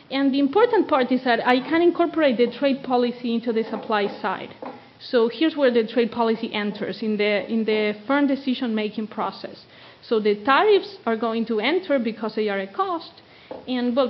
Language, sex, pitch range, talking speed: English, female, 225-280 Hz, 185 wpm